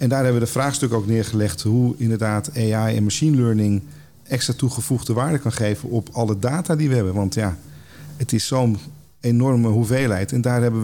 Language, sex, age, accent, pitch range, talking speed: Dutch, male, 40-59, Dutch, 105-130 Hz, 195 wpm